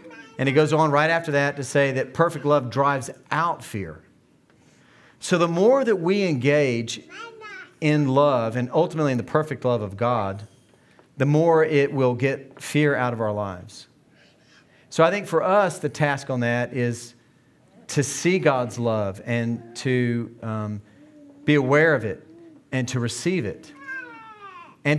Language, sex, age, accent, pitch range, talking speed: English, male, 40-59, American, 125-170 Hz, 160 wpm